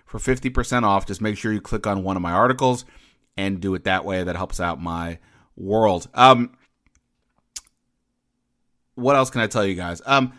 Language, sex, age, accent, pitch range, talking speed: English, male, 30-49, American, 100-130 Hz, 190 wpm